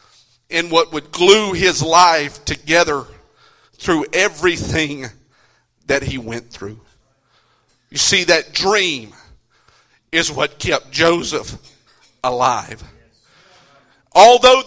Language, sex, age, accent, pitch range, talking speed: English, male, 40-59, American, 170-210 Hz, 95 wpm